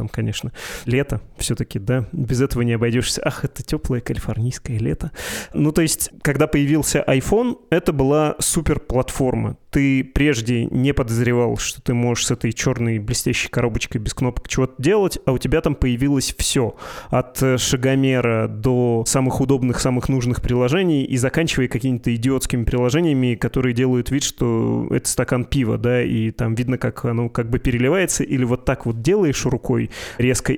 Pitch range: 120-140 Hz